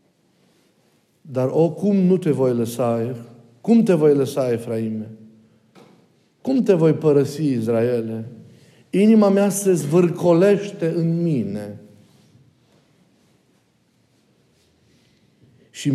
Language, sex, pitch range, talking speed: Romanian, male, 120-160 Hz, 90 wpm